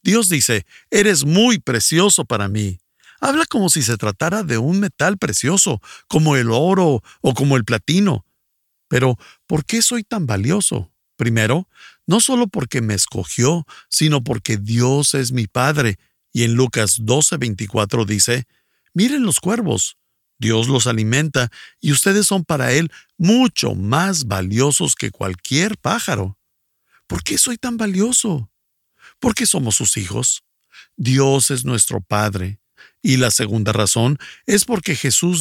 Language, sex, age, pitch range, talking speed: Spanish, male, 50-69, 115-175 Hz, 140 wpm